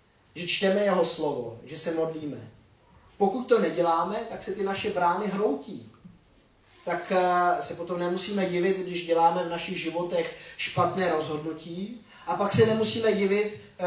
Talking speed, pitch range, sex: 145 wpm, 140-190 Hz, male